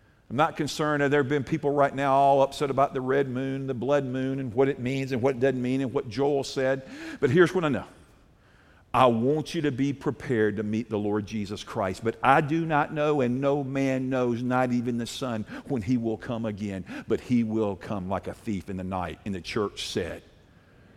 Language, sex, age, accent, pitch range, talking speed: English, male, 50-69, American, 115-155 Hz, 230 wpm